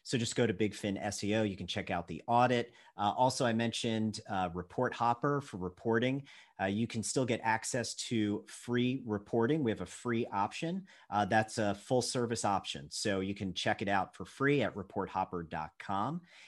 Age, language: 40-59, English